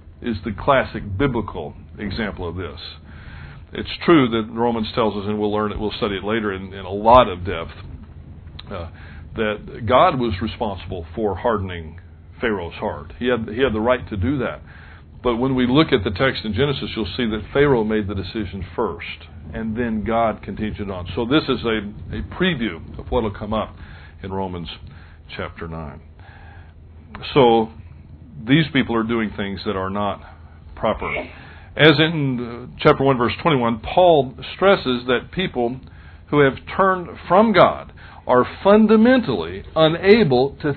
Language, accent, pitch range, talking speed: English, American, 85-125 Hz, 160 wpm